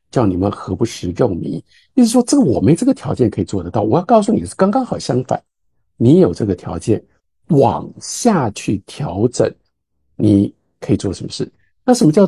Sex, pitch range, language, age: male, 95-155 Hz, Chinese, 50-69